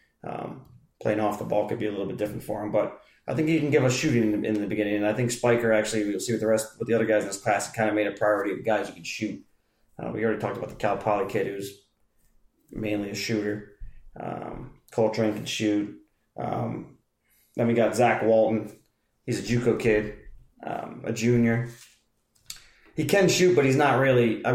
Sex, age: male, 30-49